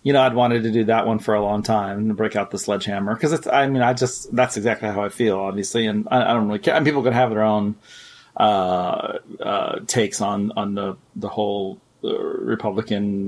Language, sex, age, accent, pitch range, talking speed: English, male, 40-59, American, 110-135 Hz, 230 wpm